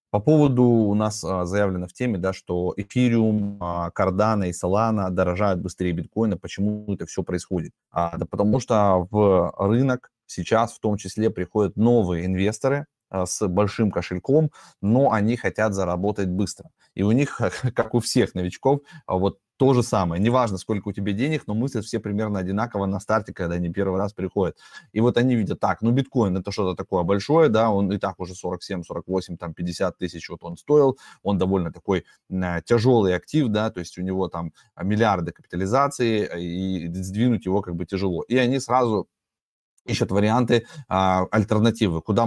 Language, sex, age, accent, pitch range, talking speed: Russian, male, 20-39, native, 95-115 Hz, 170 wpm